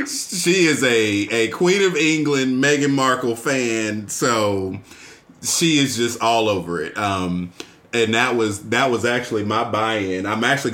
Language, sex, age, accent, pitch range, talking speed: English, male, 30-49, American, 110-170 Hz, 160 wpm